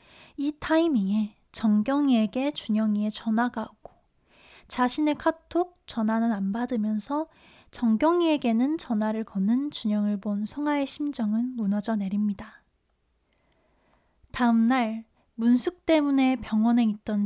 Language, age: Korean, 20-39